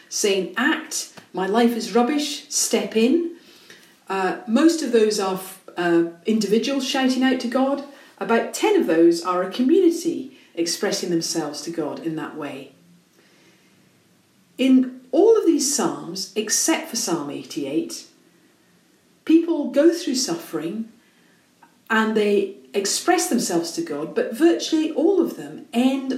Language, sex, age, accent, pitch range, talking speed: English, female, 50-69, British, 190-310 Hz, 135 wpm